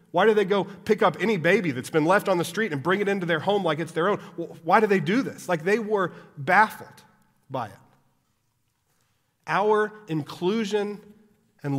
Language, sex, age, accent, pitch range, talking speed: English, male, 40-59, American, 135-170 Hz, 200 wpm